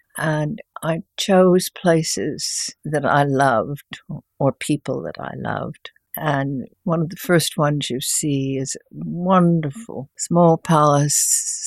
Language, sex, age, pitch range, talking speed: English, female, 60-79, 135-165 Hz, 130 wpm